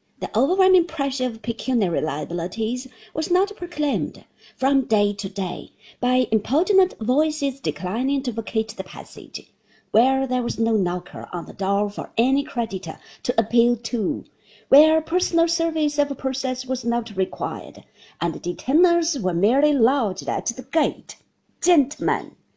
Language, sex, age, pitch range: Chinese, female, 50-69, 210-285 Hz